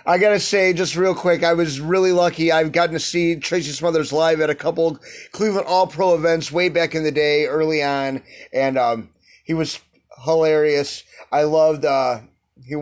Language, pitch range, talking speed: English, 140-165 Hz, 185 wpm